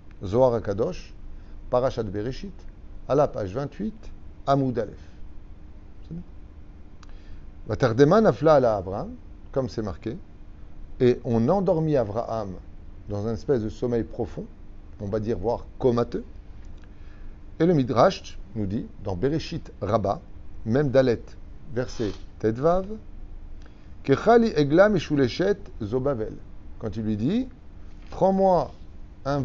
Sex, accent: male, French